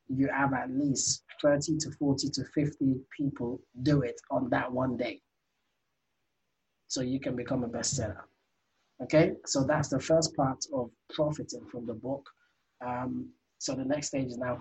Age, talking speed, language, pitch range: 20-39, 165 wpm, English, 135-155 Hz